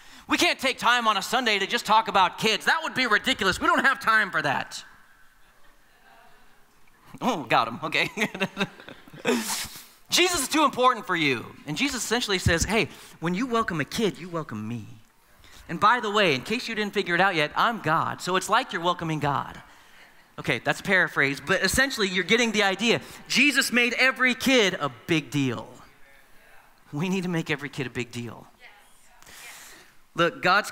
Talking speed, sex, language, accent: 180 wpm, male, English, American